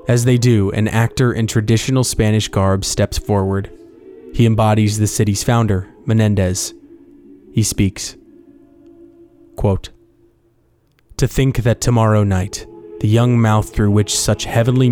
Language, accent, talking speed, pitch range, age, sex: English, American, 125 wpm, 105-125 Hz, 20-39, male